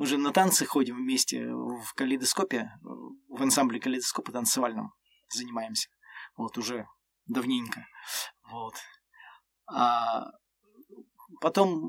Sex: male